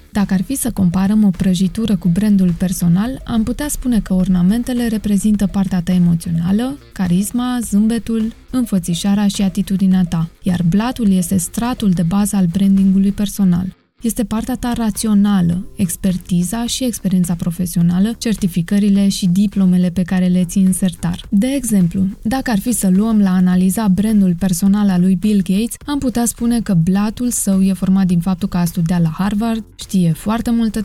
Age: 20-39